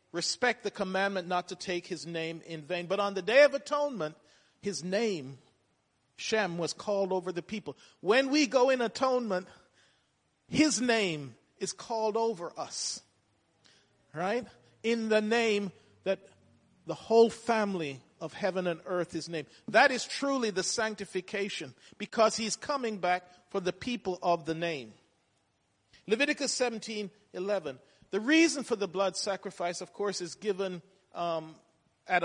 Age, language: 50-69, English